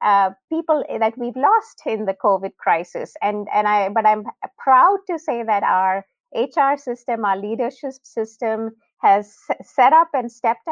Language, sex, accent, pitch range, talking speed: English, female, Indian, 200-265 Hz, 160 wpm